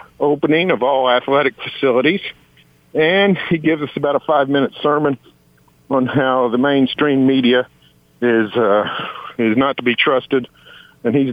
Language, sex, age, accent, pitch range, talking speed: English, male, 50-69, American, 110-160 Hz, 145 wpm